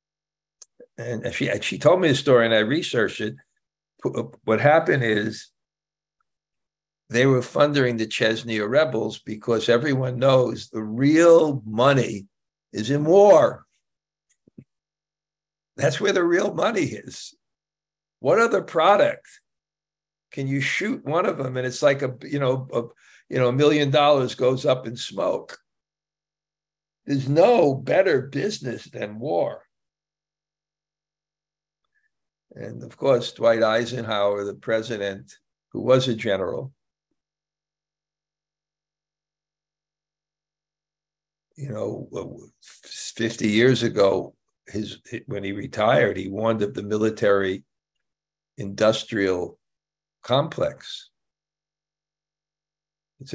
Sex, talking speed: male, 105 wpm